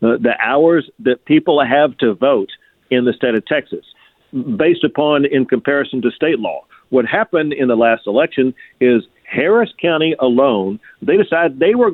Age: 50-69